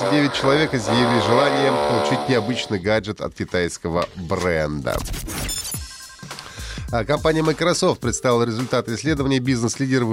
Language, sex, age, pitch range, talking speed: Russian, male, 30-49, 100-140 Hz, 105 wpm